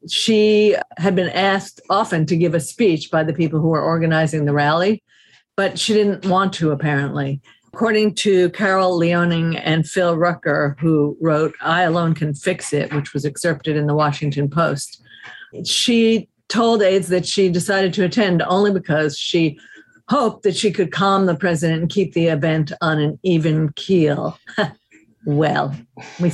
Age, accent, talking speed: 50-69, American, 165 wpm